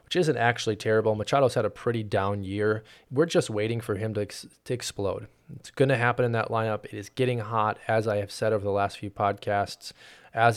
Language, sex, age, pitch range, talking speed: English, male, 20-39, 105-120 Hz, 225 wpm